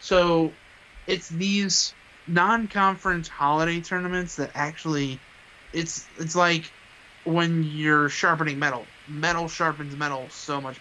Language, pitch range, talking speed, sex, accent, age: English, 130-155 Hz, 110 wpm, male, American, 20-39